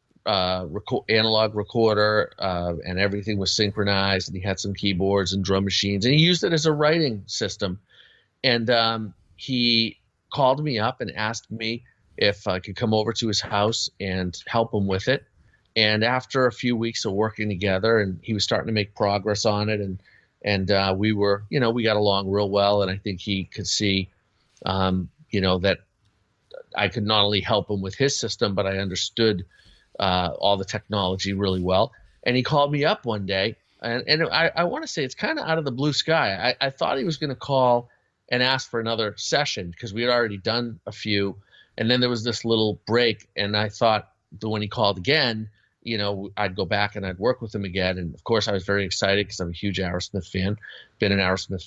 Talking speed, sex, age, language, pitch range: 215 wpm, male, 40-59, English, 95-115 Hz